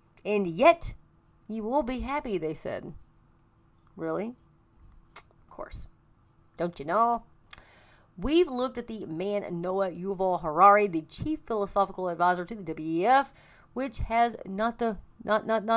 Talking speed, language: 120 wpm, English